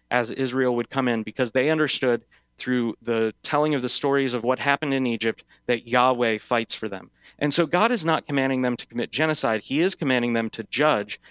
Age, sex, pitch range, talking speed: 30-49, male, 115-145 Hz, 210 wpm